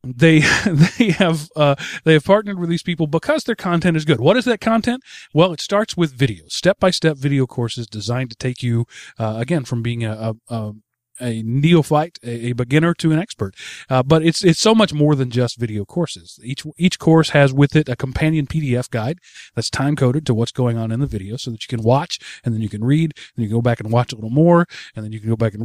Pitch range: 115-155 Hz